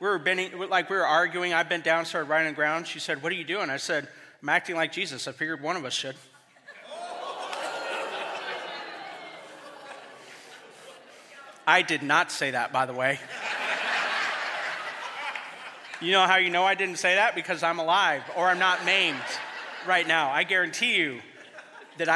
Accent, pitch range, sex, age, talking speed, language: American, 160-195 Hz, male, 40-59, 170 wpm, English